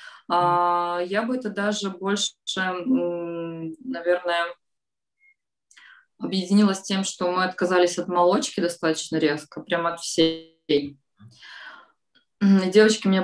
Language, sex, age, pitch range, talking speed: Russian, female, 20-39, 175-225 Hz, 95 wpm